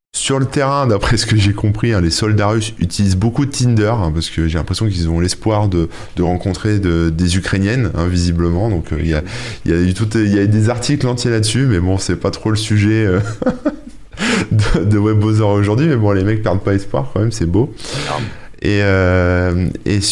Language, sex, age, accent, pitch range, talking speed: French, male, 20-39, French, 85-110 Hz, 210 wpm